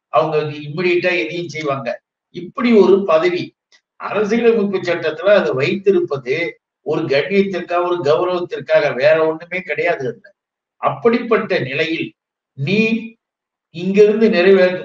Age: 60-79